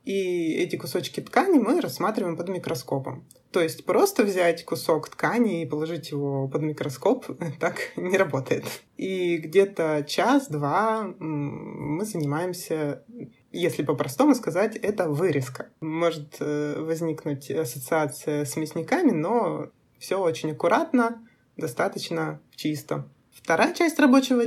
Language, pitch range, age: Russian, 150-220 Hz, 20-39